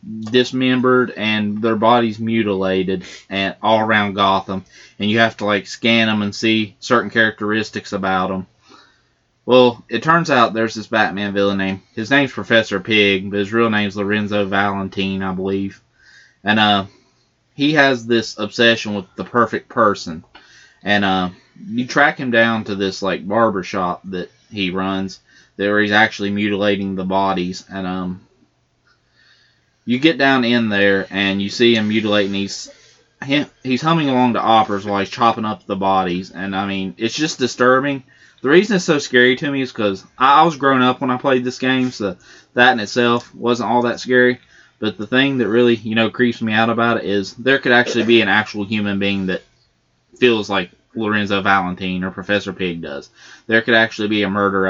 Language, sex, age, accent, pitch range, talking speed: English, male, 20-39, American, 95-120 Hz, 180 wpm